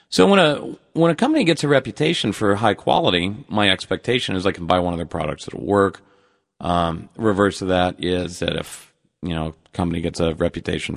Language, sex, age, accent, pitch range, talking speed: English, male, 40-59, American, 90-105 Hz, 200 wpm